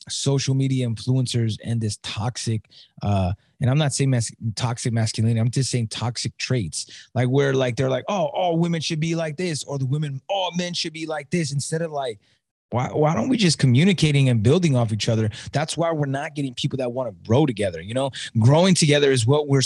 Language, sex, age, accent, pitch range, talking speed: English, male, 20-39, American, 125-165 Hz, 215 wpm